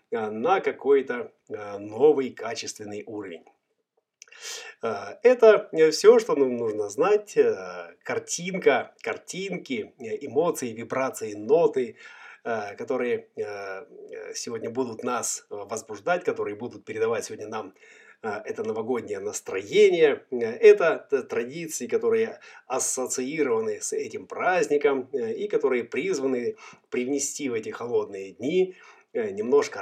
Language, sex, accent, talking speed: Russian, male, native, 90 wpm